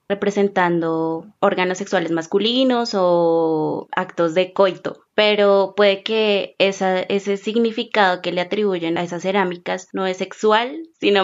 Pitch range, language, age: 170-195 Hz, Spanish, 20-39